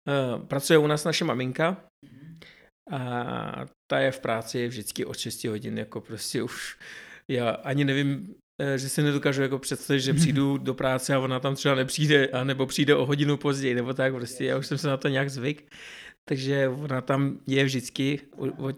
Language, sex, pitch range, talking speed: Czech, male, 115-140 Hz, 175 wpm